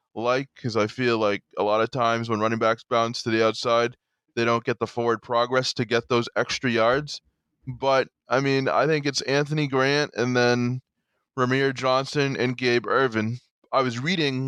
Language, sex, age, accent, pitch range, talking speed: English, male, 20-39, American, 120-140 Hz, 185 wpm